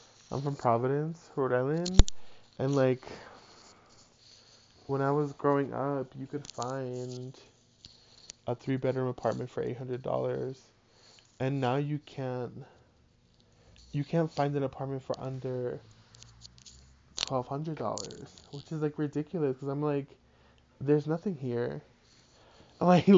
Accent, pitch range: American, 120-140 Hz